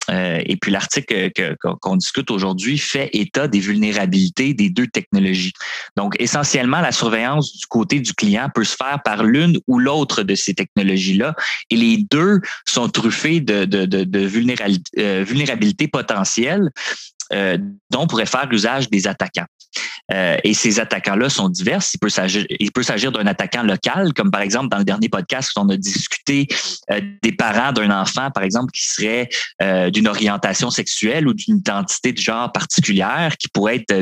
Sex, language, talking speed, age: male, French, 180 wpm, 20-39